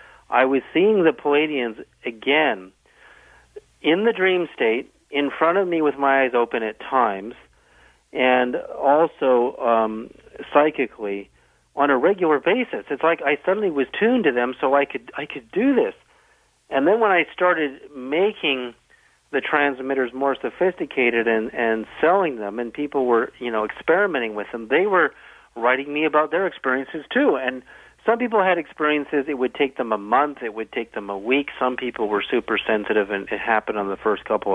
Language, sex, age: English, male, 50-69